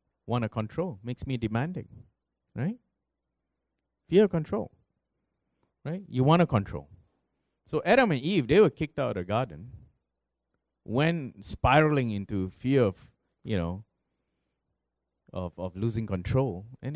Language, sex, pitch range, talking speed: English, male, 90-130 Hz, 135 wpm